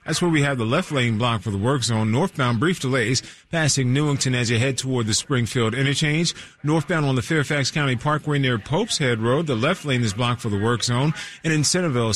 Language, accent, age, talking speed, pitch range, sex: English, American, 30-49, 225 wpm, 120-155 Hz, male